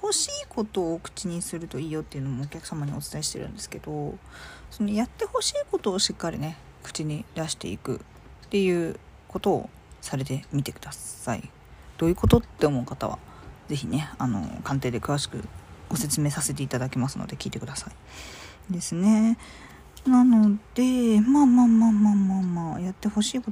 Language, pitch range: Japanese, 140-225 Hz